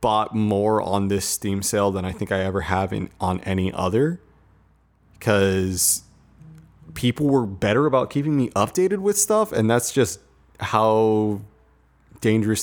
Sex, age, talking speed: male, 30-49, 145 wpm